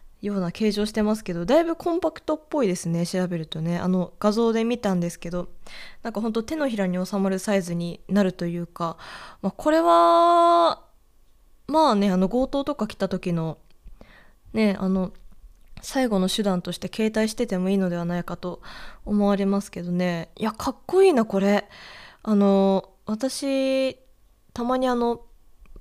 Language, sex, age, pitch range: Japanese, female, 20-39, 185-255 Hz